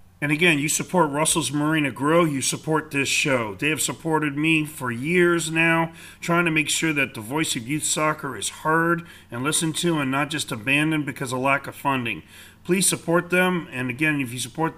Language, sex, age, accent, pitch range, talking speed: English, male, 40-59, American, 115-145 Hz, 205 wpm